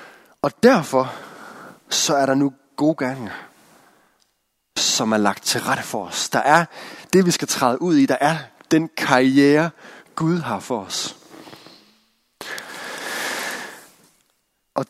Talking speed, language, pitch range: 130 wpm, Danish, 115-165 Hz